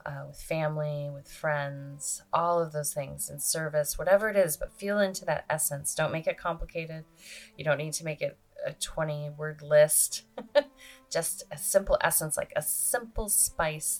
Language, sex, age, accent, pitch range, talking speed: English, female, 20-39, American, 145-160 Hz, 175 wpm